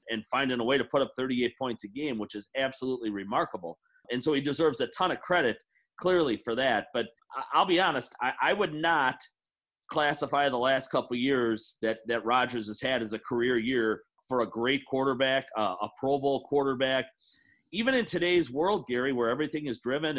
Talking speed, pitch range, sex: 190 wpm, 115-150 Hz, male